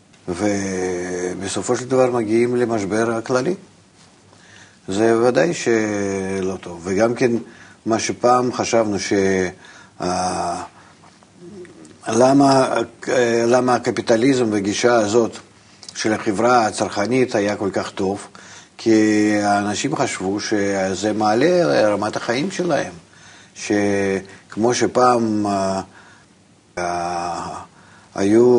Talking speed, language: 85 wpm, Hebrew